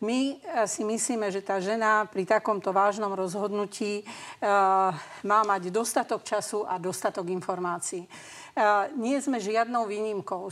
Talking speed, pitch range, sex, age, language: 130 wpm, 190-220 Hz, female, 50-69, Slovak